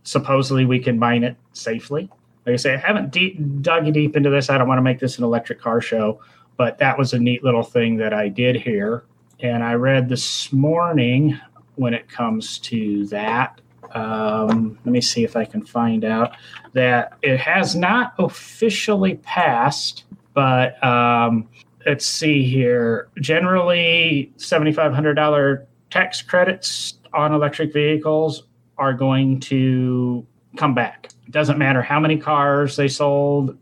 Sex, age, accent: male, 30-49, American